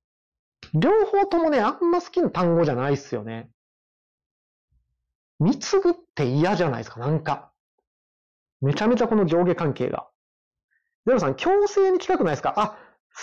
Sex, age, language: male, 30-49, Japanese